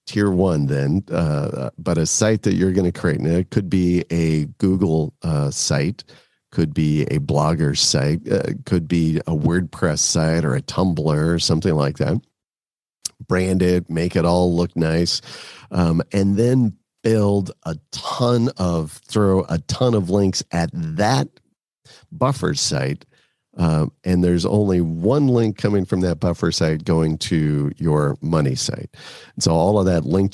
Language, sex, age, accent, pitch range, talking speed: English, male, 50-69, American, 80-100 Hz, 160 wpm